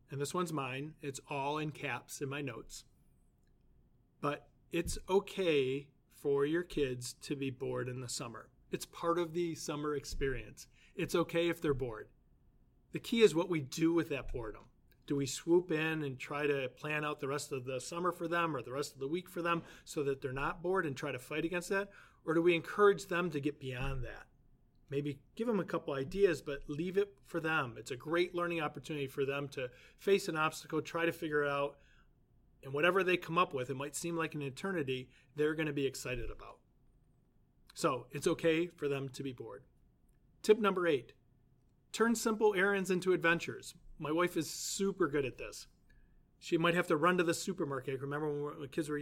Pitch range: 140-170 Hz